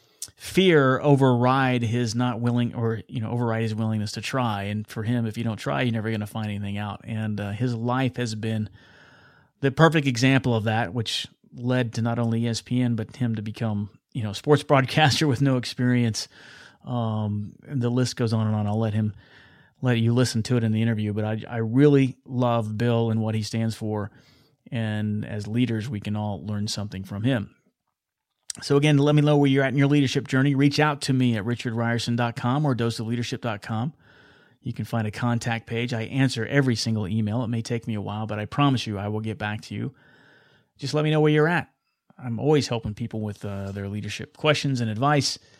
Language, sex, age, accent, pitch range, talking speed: English, male, 30-49, American, 110-130 Hz, 210 wpm